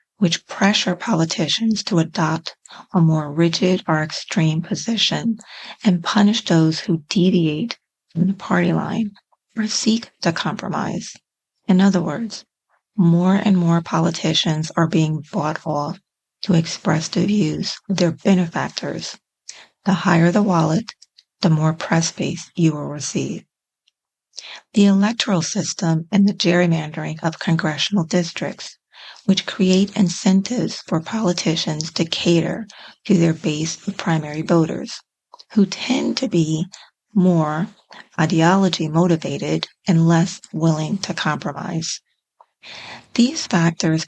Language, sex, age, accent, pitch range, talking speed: English, female, 40-59, American, 165-195 Hz, 120 wpm